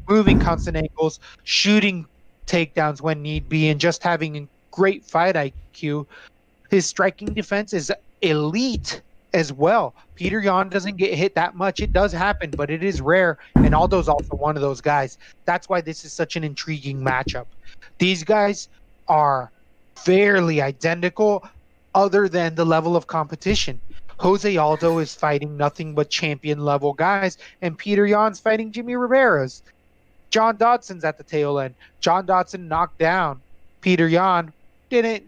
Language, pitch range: English, 155-190 Hz